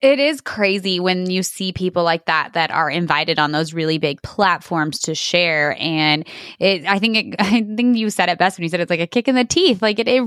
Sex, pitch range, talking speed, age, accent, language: female, 170-215 Hz, 250 wpm, 20-39, American, English